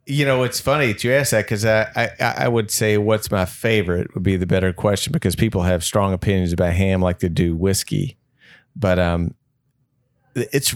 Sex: male